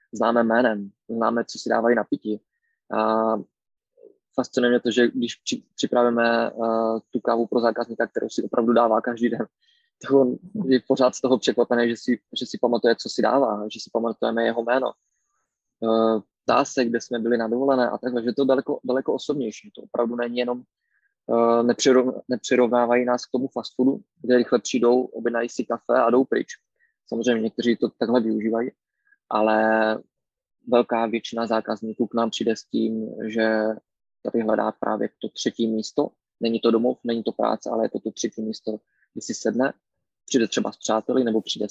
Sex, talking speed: male, 175 wpm